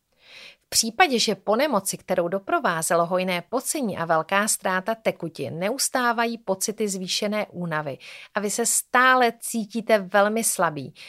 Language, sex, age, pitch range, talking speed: Czech, female, 40-59, 180-230 Hz, 130 wpm